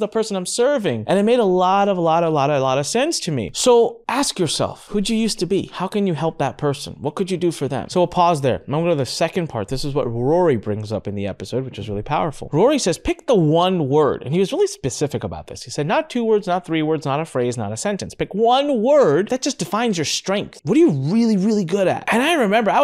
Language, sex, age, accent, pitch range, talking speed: English, male, 30-49, American, 120-180 Hz, 295 wpm